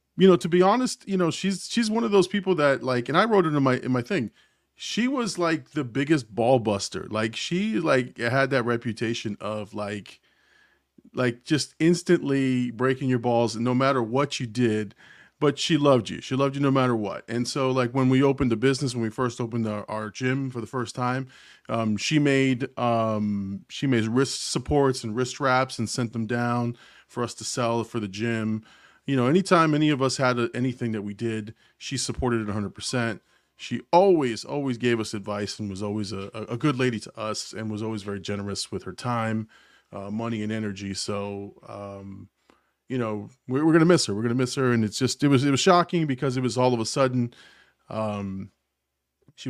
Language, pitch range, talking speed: English, 110-135 Hz, 210 wpm